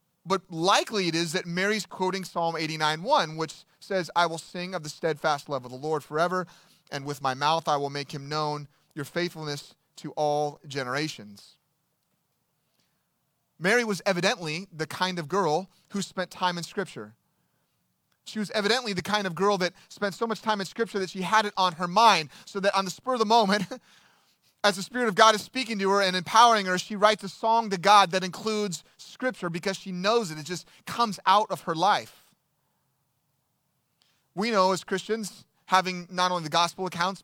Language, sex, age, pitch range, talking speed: English, male, 30-49, 160-200 Hz, 190 wpm